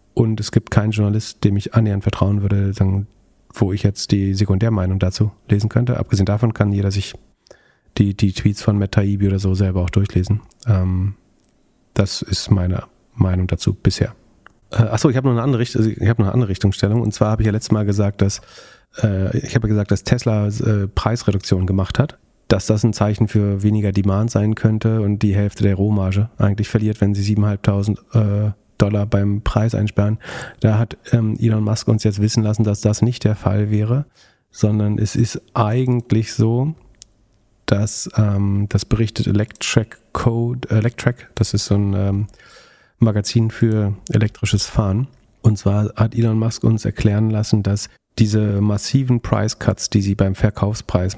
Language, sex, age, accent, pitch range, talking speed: German, male, 40-59, German, 100-115 Hz, 170 wpm